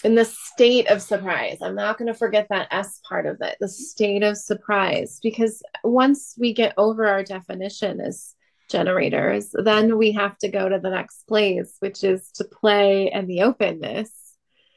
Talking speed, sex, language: 180 wpm, female, English